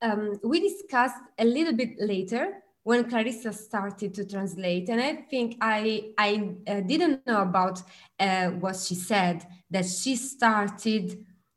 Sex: female